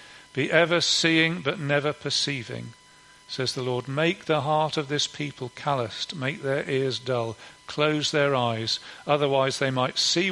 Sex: male